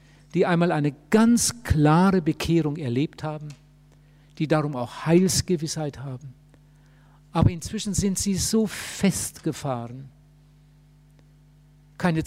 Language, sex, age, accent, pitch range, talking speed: German, male, 60-79, German, 150-165 Hz, 100 wpm